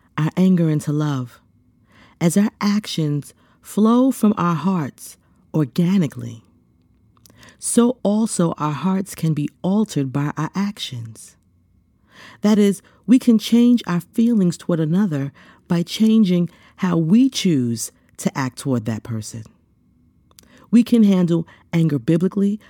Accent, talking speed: American, 120 wpm